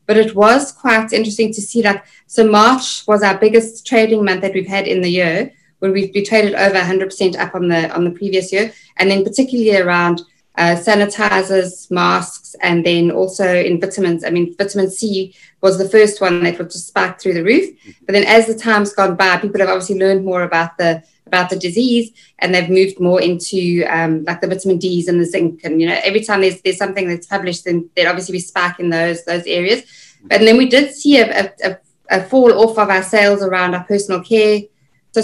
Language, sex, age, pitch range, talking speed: English, female, 20-39, 180-215 Hz, 220 wpm